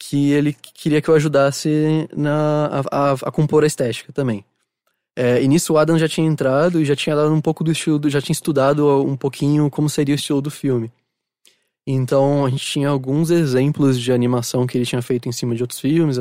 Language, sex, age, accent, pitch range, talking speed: Portuguese, male, 20-39, Brazilian, 130-155 Hz, 215 wpm